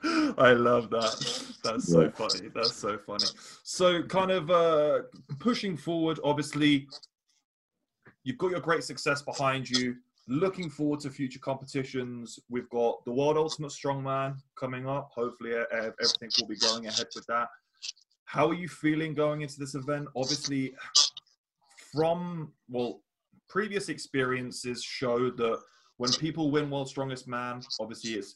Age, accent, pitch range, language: 20-39, British, 115-150 Hz, English